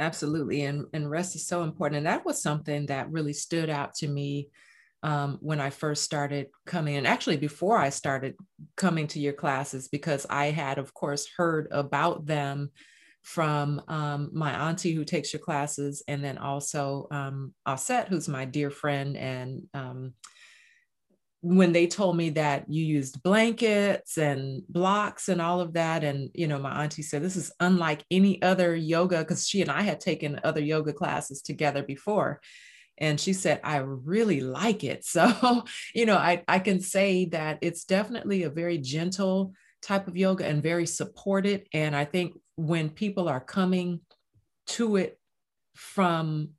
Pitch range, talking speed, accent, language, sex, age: 145-180 Hz, 170 wpm, American, English, female, 30-49